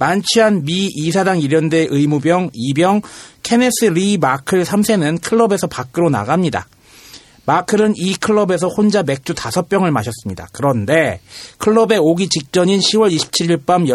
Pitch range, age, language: 135-190 Hz, 40-59, Korean